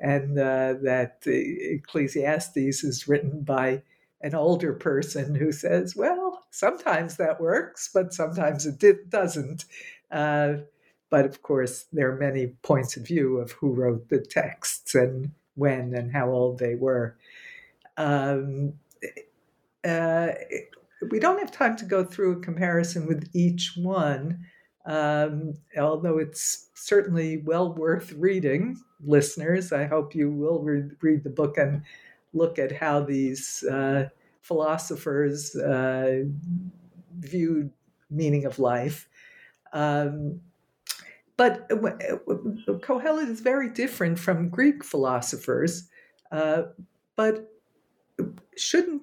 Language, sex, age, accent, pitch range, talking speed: English, female, 60-79, American, 145-185 Hz, 120 wpm